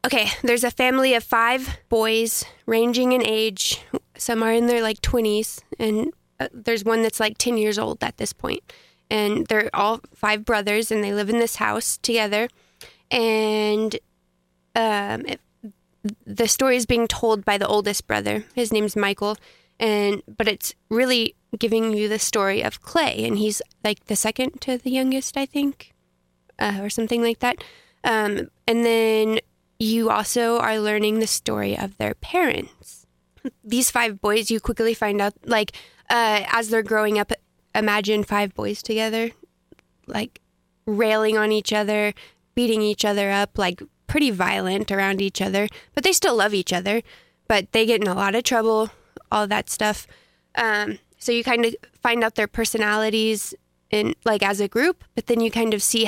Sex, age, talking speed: female, 20-39, 170 wpm